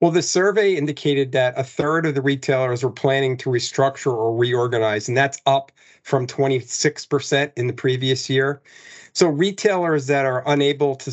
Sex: male